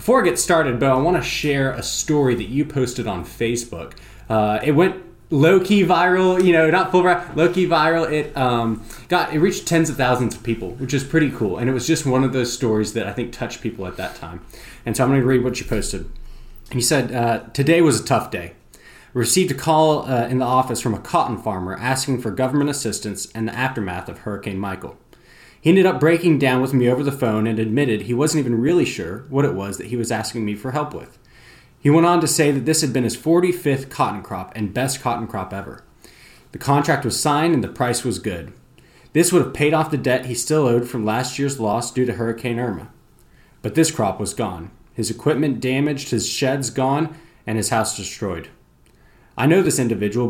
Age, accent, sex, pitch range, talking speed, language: 20-39, American, male, 115-150 Hz, 225 wpm, English